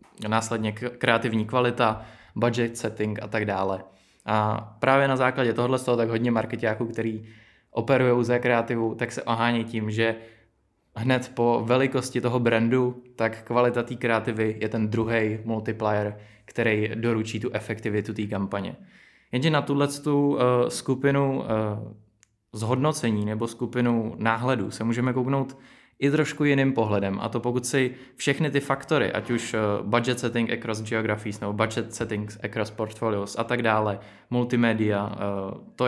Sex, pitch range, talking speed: male, 110-125 Hz, 140 wpm